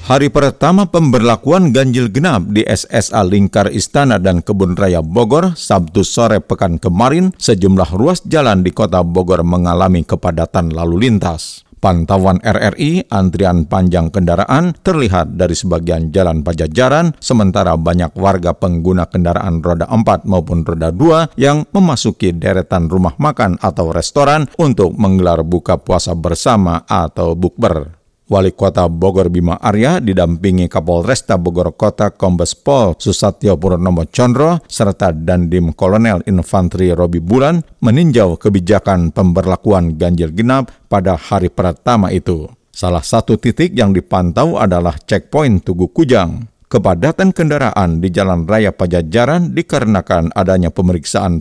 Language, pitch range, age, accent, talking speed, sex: Indonesian, 90-115 Hz, 50-69, native, 125 wpm, male